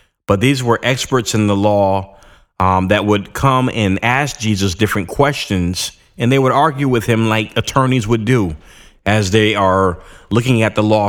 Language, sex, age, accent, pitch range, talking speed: English, male, 30-49, American, 95-130 Hz, 180 wpm